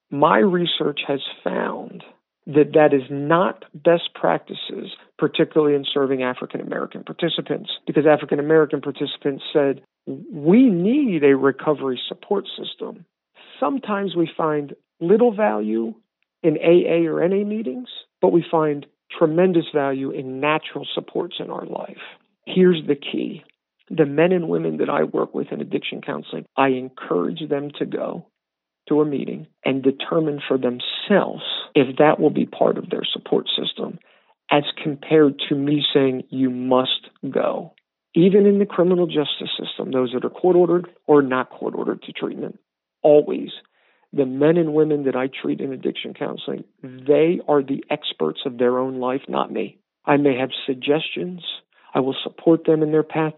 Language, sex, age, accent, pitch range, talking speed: English, male, 50-69, American, 135-165 Hz, 155 wpm